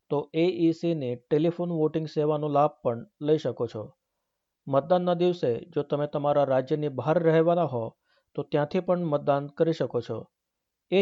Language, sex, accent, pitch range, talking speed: Gujarati, male, native, 145-170 Hz, 160 wpm